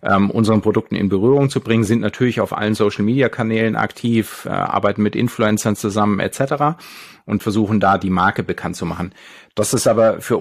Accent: German